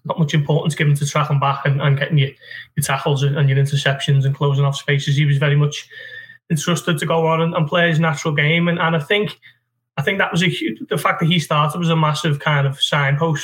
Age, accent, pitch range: 20-39, British, 145-160 Hz